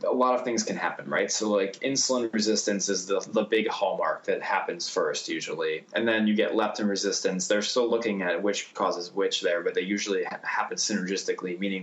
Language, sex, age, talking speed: English, male, 20-39, 210 wpm